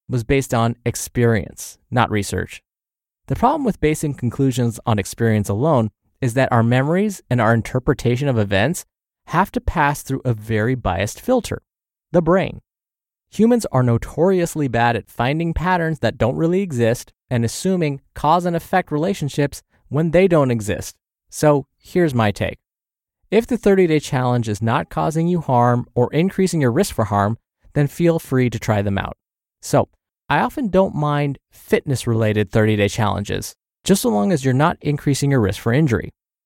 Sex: male